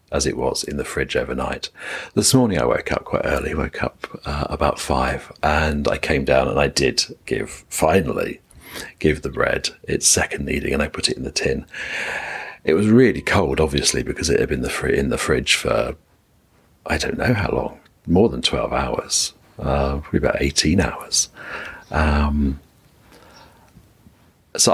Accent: British